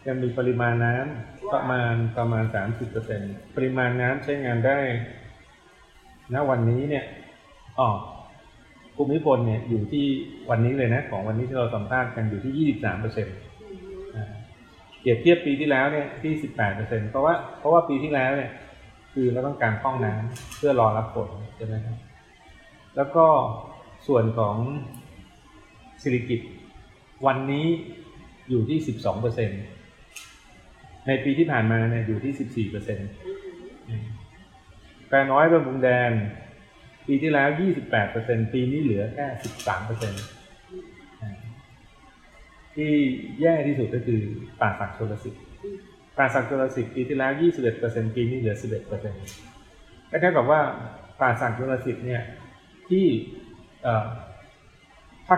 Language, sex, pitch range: English, male, 110-135 Hz